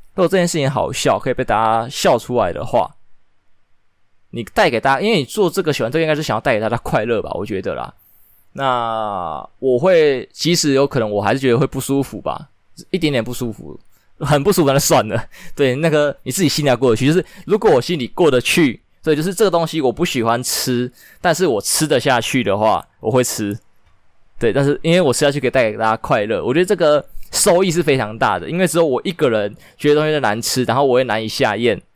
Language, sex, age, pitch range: Chinese, male, 20-39, 115-160 Hz